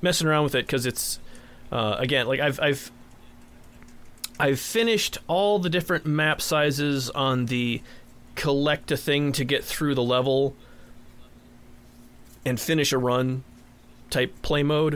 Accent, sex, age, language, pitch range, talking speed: American, male, 30-49, English, 115-150 Hz, 140 wpm